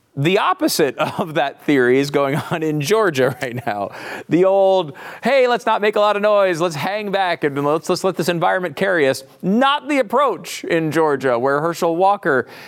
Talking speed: 195 wpm